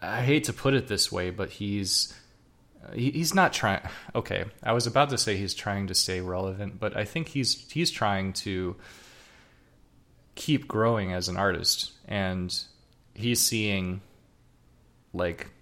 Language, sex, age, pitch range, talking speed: English, male, 20-39, 90-105 Hz, 150 wpm